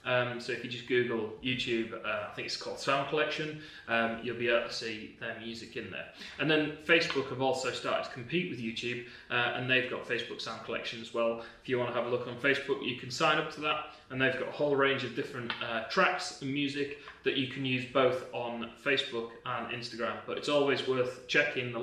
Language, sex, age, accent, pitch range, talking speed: English, male, 20-39, British, 115-150 Hz, 235 wpm